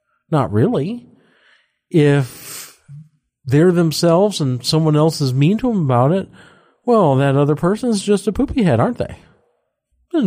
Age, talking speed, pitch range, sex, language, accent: 50-69, 145 wpm, 130-215 Hz, male, English, American